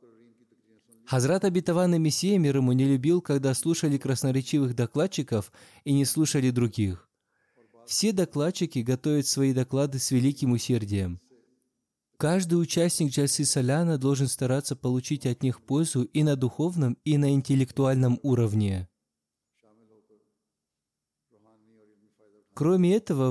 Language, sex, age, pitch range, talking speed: Russian, male, 20-39, 120-155 Hz, 110 wpm